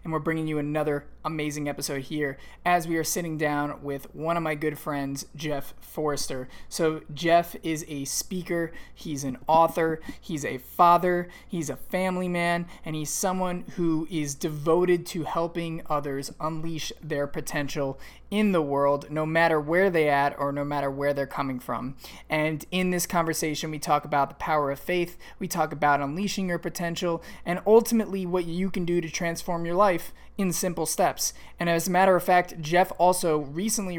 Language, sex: English, male